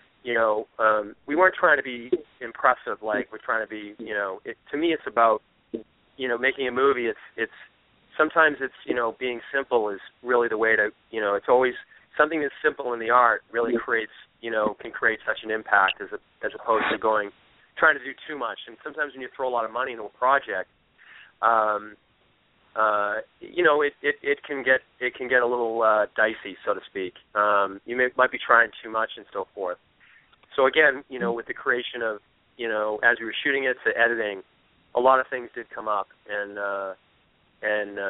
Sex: male